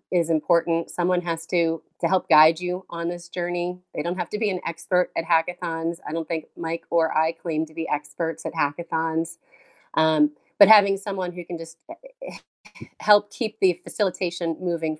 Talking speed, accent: 180 wpm, American